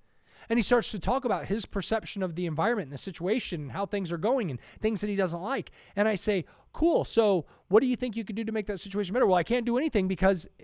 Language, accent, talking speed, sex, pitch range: English, American, 270 wpm, male, 130-200 Hz